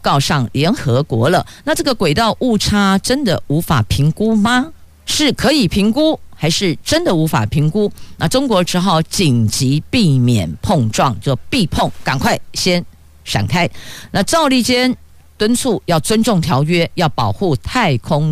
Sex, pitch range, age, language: female, 135-200 Hz, 50-69, Chinese